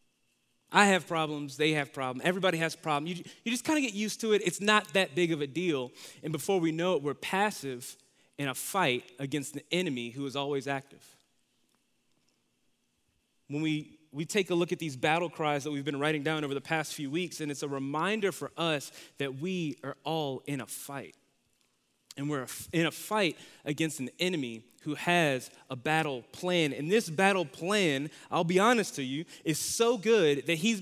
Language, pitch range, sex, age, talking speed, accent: English, 150-190 Hz, male, 20-39, 200 wpm, American